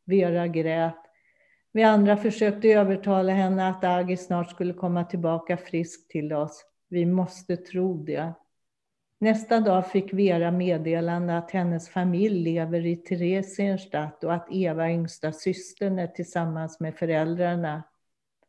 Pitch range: 165-195 Hz